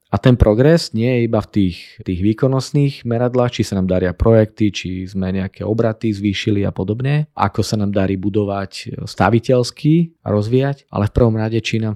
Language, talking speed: Slovak, 180 wpm